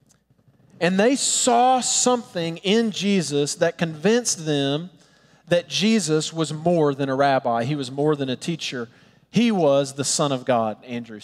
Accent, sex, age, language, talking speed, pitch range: American, male, 40-59, English, 155 wpm, 155-210 Hz